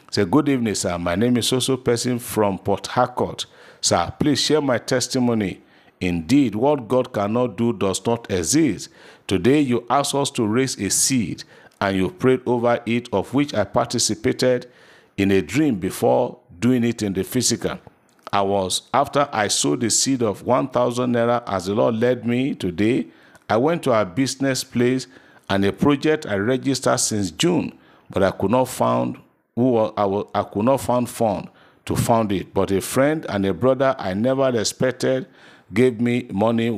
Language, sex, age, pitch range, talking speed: English, male, 50-69, 100-130 Hz, 170 wpm